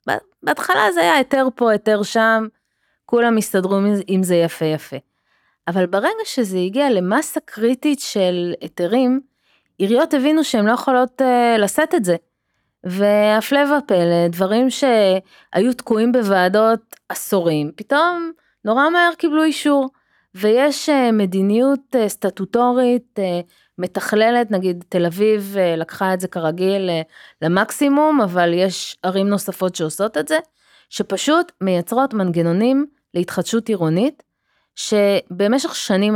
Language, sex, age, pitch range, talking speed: Hebrew, female, 20-39, 180-250 Hz, 120 wpm